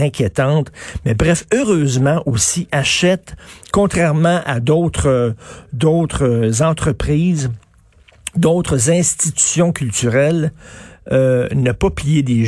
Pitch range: 125-165 Hz